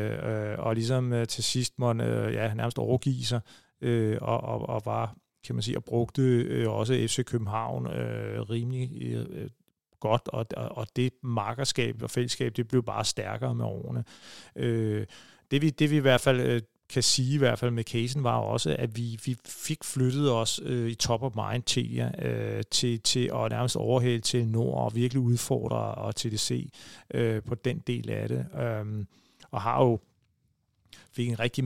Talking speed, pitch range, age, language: 160 wpm, 115-130 Hz, 40-59, Danish